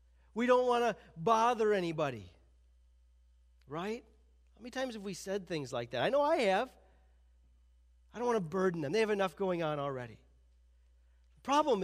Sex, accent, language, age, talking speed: male, American, English, 40-59, 170 wpm